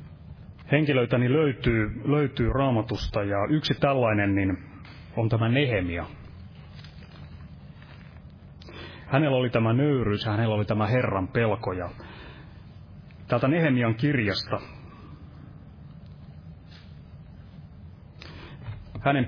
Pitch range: 90-125 Hz